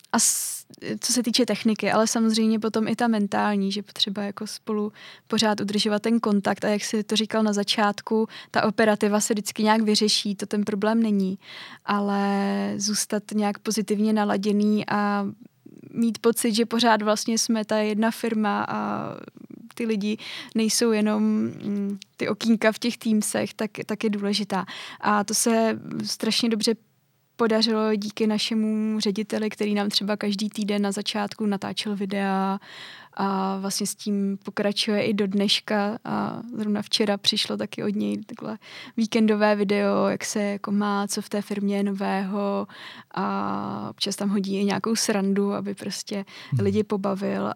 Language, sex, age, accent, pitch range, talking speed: Czech, female, 20-39, native, 200-220 Hz, 155 wpm